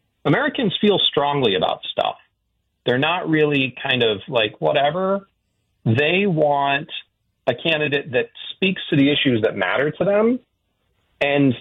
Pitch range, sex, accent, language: 110-155 Hz, male, American, English